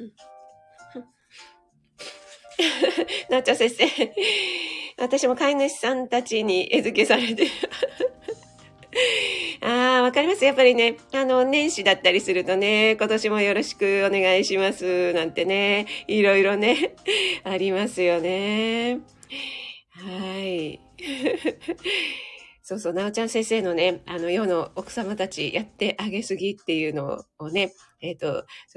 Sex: female